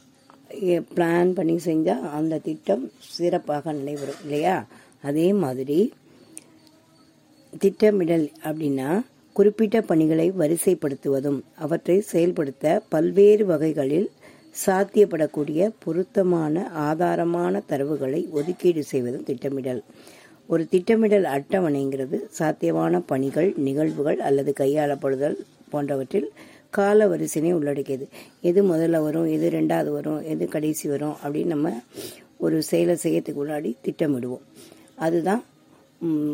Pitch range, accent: 150-180 Hz, native